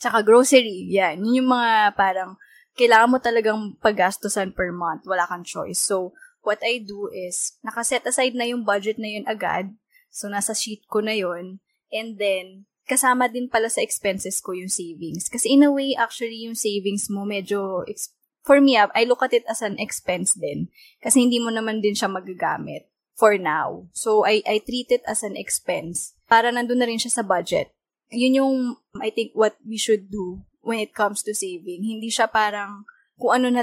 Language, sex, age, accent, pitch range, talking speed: English, female, 20-39, Filipino, 195-240 Hz, 190 wpm